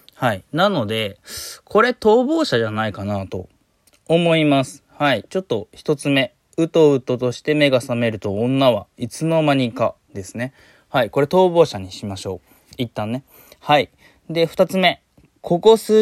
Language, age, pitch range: Japanese, 20-39, 115-190 Hz